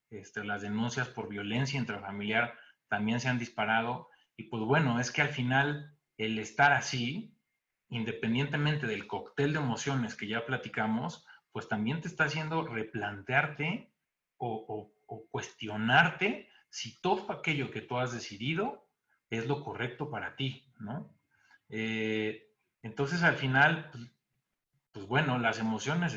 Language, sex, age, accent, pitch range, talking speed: Spanish, male, 40-59, Mexican, 110-145 Hz, 140 wpm